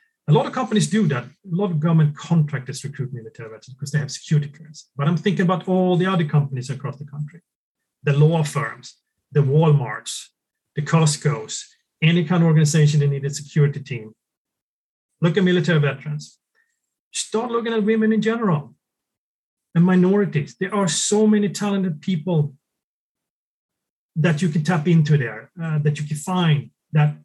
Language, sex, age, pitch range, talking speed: English, male, 30-49, 145-175 Hz, 165 wpm